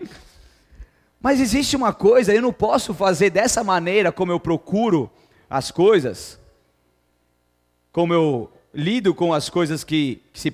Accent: Brazilian